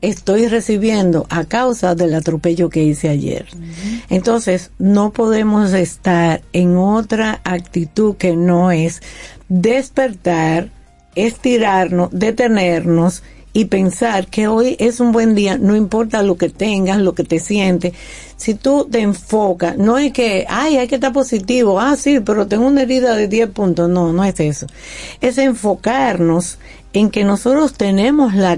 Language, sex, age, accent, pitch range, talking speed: Spanish, female, 50-69, American, 175-235 Hz, 150 wpm